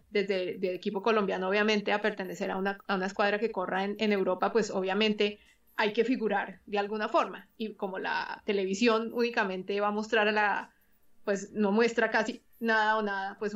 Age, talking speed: 20-39, 190 wpm